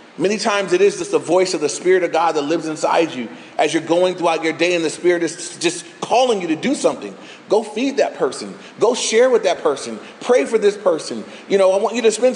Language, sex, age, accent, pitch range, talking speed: English, male, 30-49, American, 185-250 Hz, 250 wpm